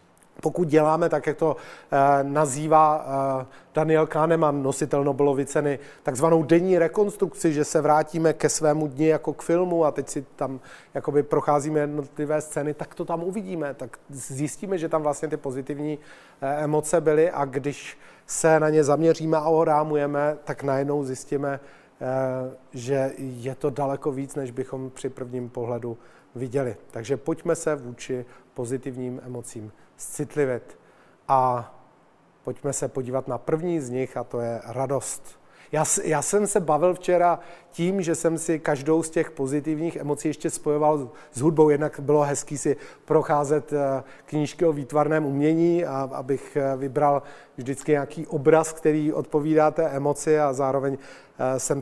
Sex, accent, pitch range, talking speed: male, native, 135-155 Hz, 145 wpm